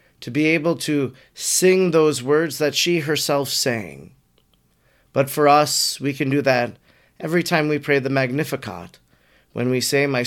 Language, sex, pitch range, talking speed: English, male, 130-160 Hz, 165 wpm